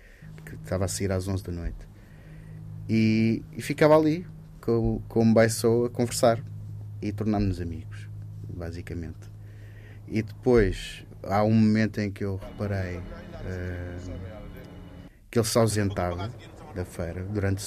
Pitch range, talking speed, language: 100-125 Hz, 135 wpm, Portuguese